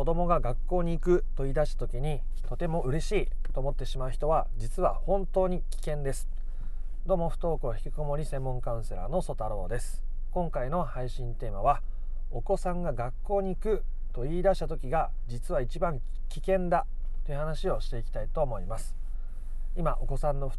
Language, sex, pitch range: Japanese, male, 125-175 Hz